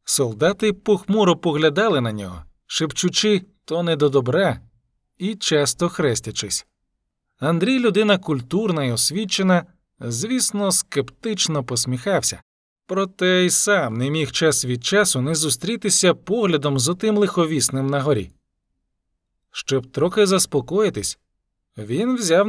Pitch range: 135-195 Hz